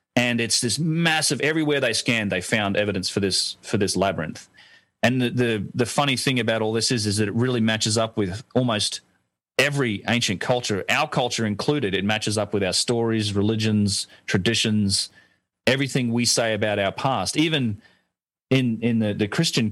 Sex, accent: male, Australian